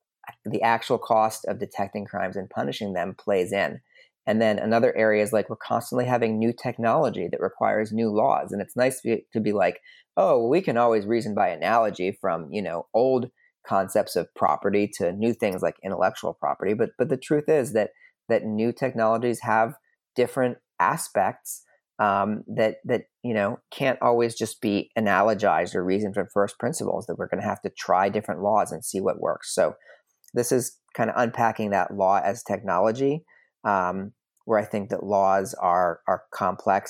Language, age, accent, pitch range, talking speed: English, 30-49, American, 105-125 Hz, 180 wpm